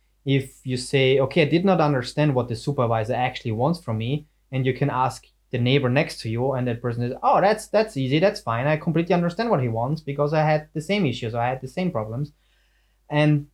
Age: 20-39